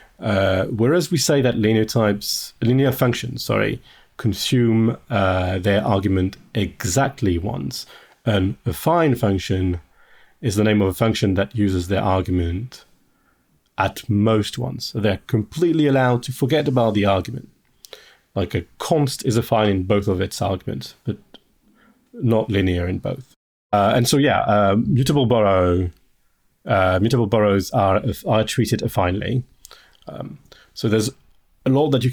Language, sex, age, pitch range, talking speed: English, male, 30-49, 95-125 Hz, 140 wpm